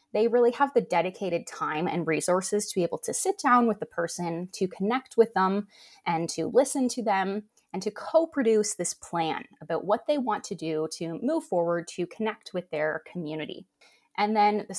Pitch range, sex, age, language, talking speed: 170-220 Hz, female, 20-39, English, 195 wpm